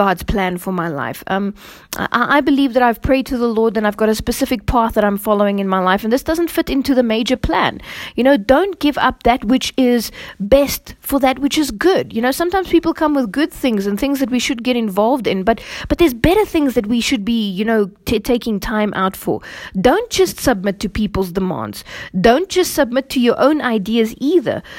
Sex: female